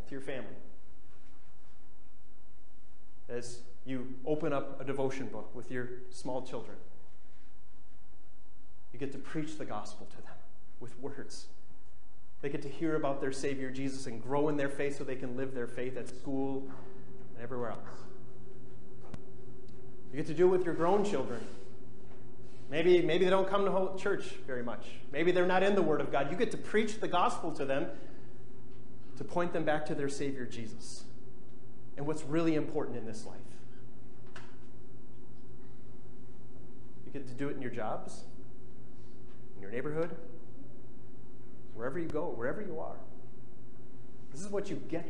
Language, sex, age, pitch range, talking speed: English, male, 30-49, 125-140 Hz, 160 wpm